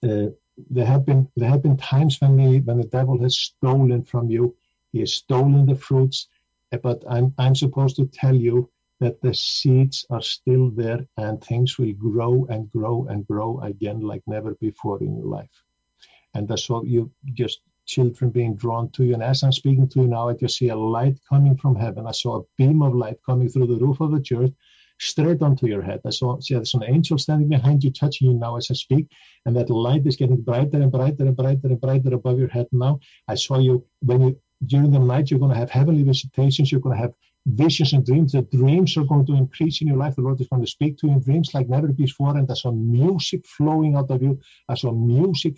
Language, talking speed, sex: German, 235 wpm, male